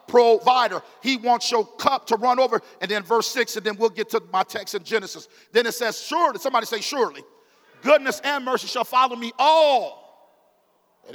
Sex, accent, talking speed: male, American, 195 wpm